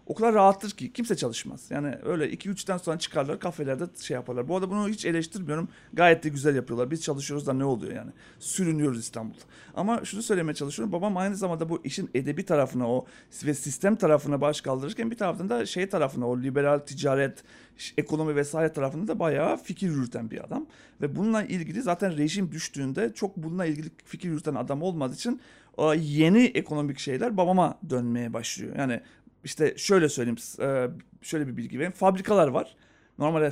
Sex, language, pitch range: male, Turkish, 145-205 Hz